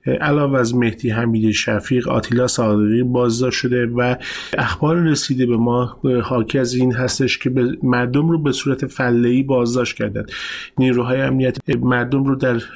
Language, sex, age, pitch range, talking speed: Persian, male, 30-49, 120-135 Hz, 150 wpm